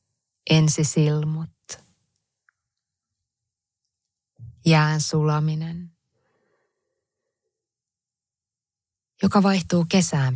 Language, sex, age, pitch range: Finnish, female, 30-49, 115-160 Hz